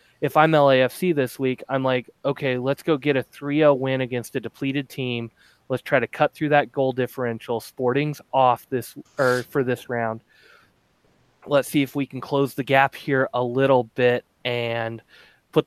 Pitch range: 120-135 Hz